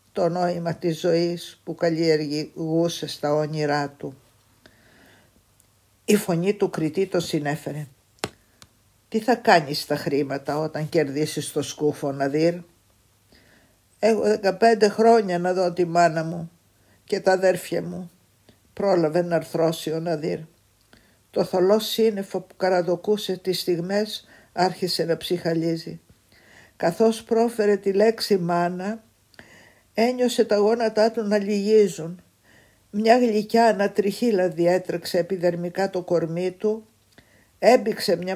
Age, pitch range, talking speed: 50-69, 160-200 Hz, 115 wpm